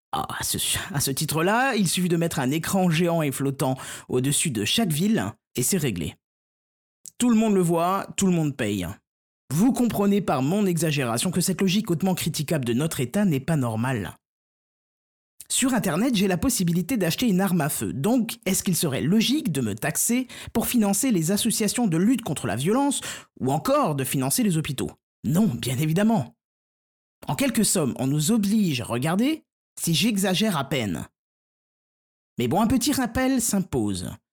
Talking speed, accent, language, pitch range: 175 wpm, French, French, 140-215 Hz